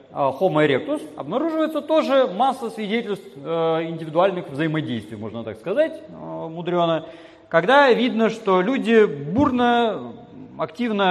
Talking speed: 105 wpm